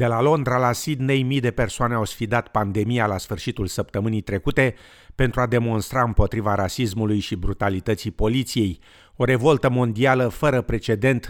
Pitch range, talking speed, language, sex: 100-125 Hz, 150 wpm, Romanian, male